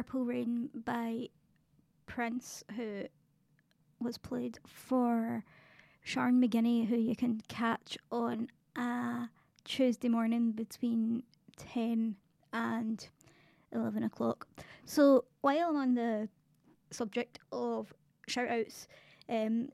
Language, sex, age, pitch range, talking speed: English, female, 20-39, 225-250 Hz, 100 wpm